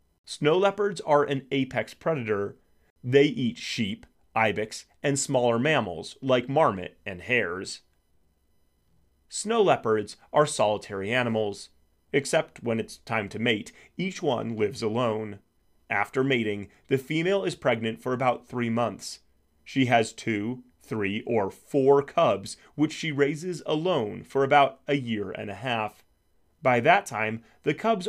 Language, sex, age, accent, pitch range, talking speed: English, male, 30-49, American, 105-145 Hz, 140 wpm